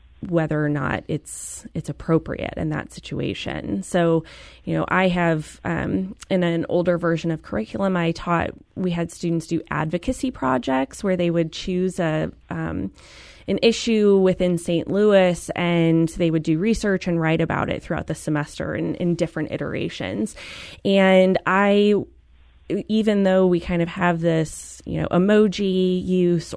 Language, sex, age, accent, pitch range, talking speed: English, female, 20-39, American, 160-185 Hz, 155 wpm